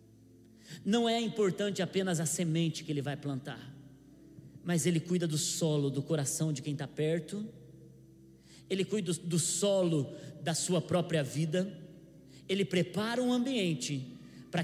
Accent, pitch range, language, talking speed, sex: Brazilian, 150-250 Hz, Portuguese, 140 wpm, male